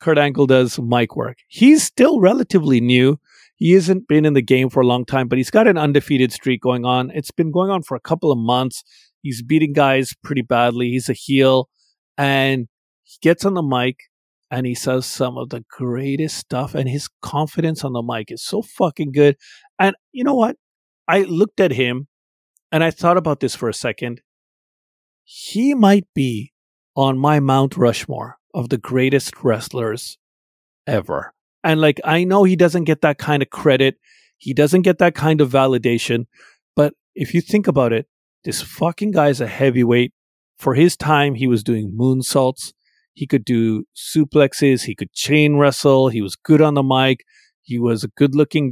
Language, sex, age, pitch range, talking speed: English, male, 40-59, 125-160 Hz, 185 wpm